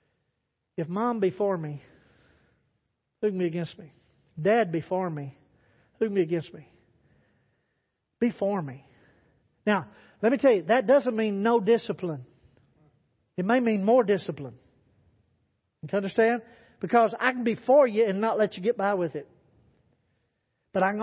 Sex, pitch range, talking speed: male, 160-235 Hz, 160 wpm